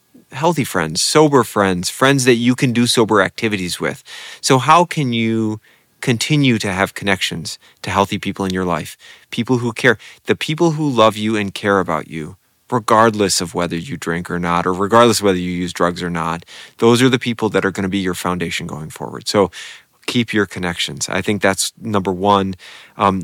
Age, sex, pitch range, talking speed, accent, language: 30-49, male, 95-115 Hz, 200 wpm, American, English